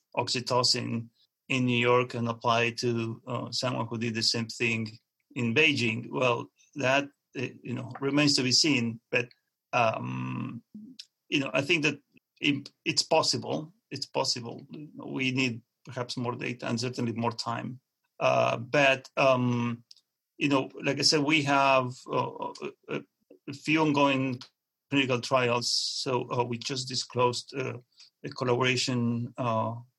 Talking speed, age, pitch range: 140 wpm, 40-59, 120-135 Hz